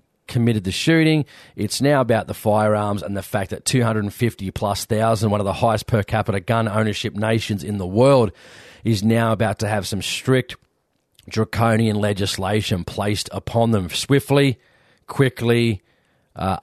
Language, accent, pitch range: English, Australian, 100-120 Hz